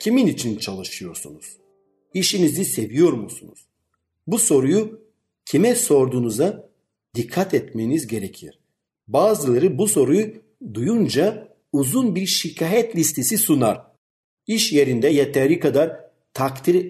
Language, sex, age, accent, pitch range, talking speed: Turkish, male, 50-69, native, 125-185 Hz, 95 wpm